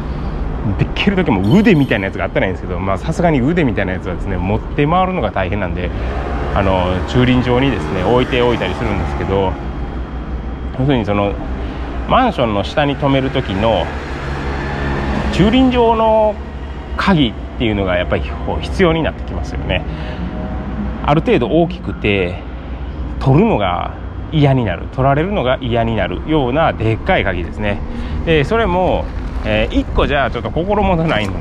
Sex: male